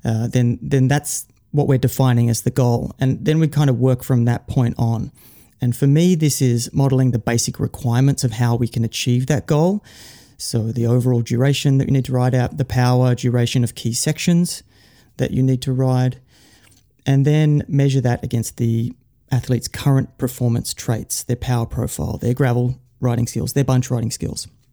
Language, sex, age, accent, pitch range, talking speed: English, male, 30-49, Australian, 120-135 Hz, 190 wpm